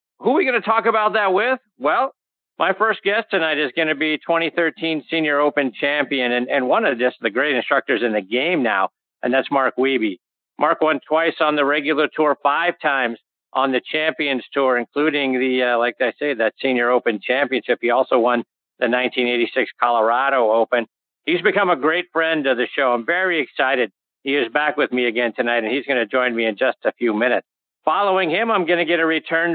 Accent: American